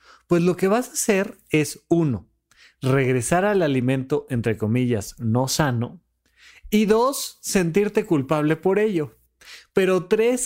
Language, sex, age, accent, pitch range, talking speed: Spanish, male, 30-49, Mexican, 155-210 Hz, 130 wpm